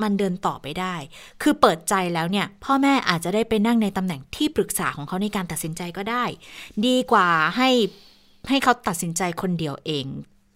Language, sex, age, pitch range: Thai, female, 20-39, 180-235 Hz